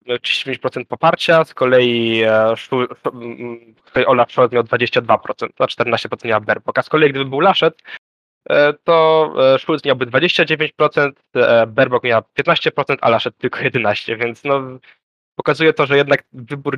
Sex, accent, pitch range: male, native, 115-140 Hz